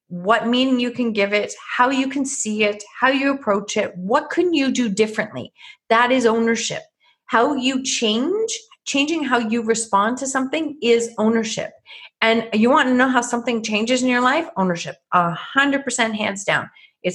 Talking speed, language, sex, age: 175 wpm, English, female, 40-59